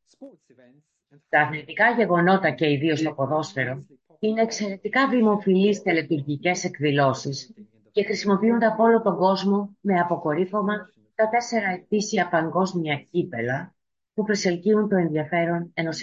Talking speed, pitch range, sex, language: 110 wpm, 150-200 Hz, female, Greek